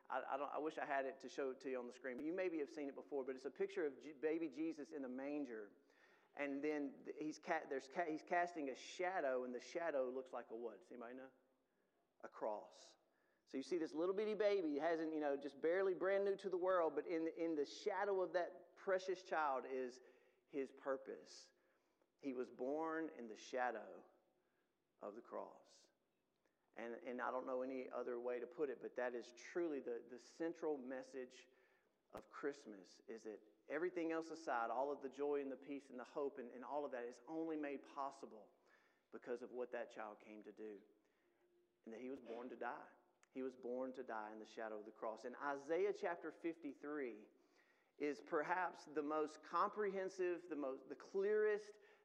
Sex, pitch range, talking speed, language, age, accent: male, 130-175 Hz, 205 wpm, English, 40-59, American